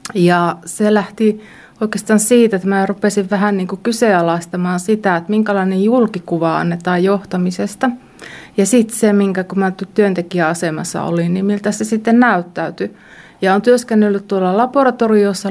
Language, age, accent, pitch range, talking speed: Finnish, 30-49, native, 180-210 Hz, 135 wpm